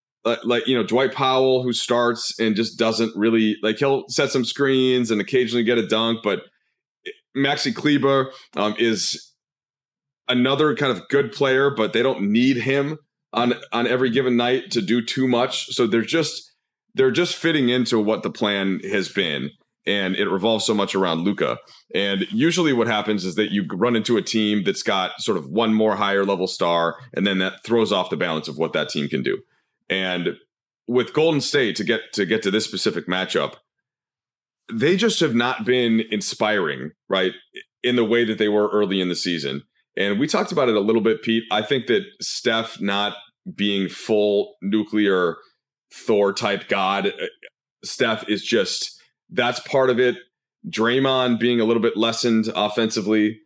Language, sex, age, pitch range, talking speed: English, male, 30-49, 105-130 Hz, 180 wpm